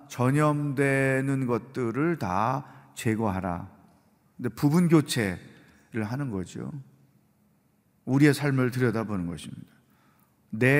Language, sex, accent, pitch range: Korean, male, native, 115-155 Hz